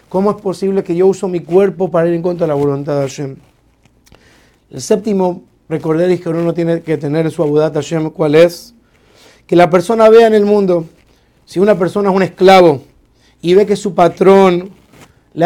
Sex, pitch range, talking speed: male, 170-200 Hz, 200 wpm